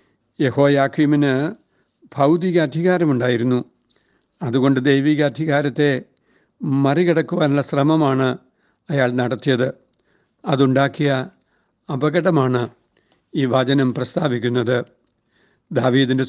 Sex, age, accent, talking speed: male, 60-79, native, 55 wpm